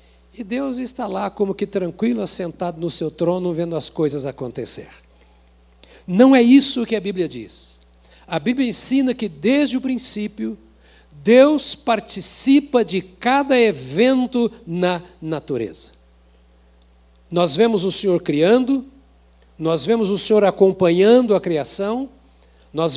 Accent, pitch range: Brazilian, 160-230 Hz